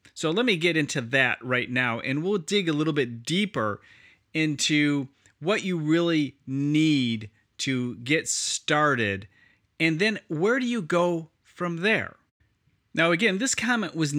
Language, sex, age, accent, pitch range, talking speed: English, male, 30-49, American, 130-175 Hz, 150 wpm